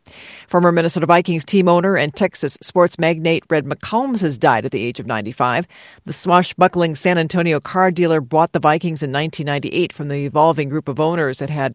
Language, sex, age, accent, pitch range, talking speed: English, female, 50-69, American, 140-175 Hz, 190 wpm